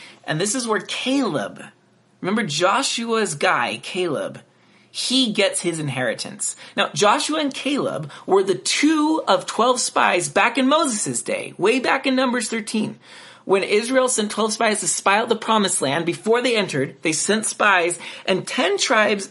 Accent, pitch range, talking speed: American, 165-230 Hz, 160 wpm